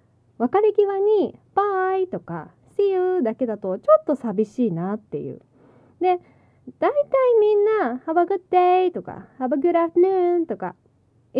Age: 20-39